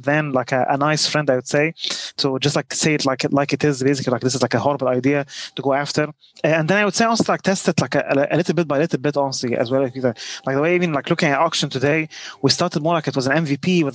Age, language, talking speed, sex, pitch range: 20-39, English, 295 wpm, male, 135-160 Hz